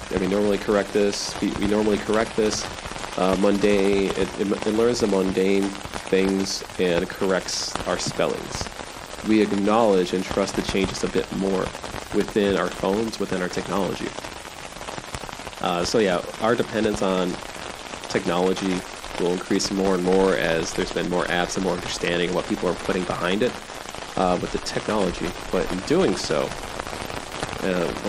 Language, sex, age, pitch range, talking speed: English, male, 30-49, 90-100 Hz, 155 wpm